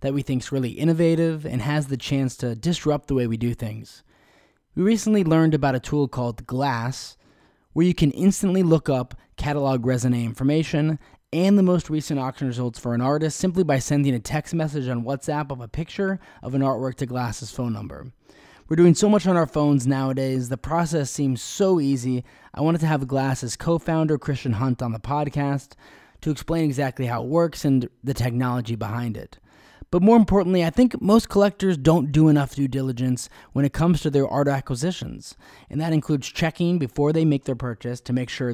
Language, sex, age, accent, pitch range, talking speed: English, male, 20-39, American, 125-160 Hz, 200 wpm